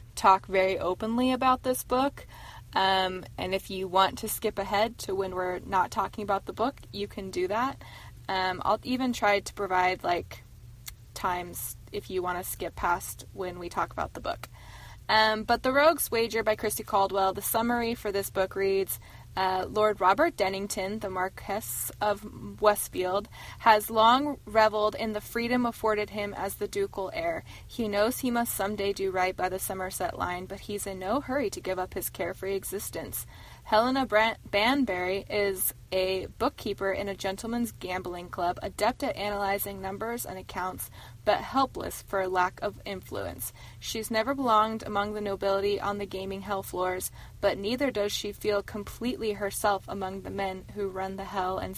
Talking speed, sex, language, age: 175 wpm, female, English, 20-39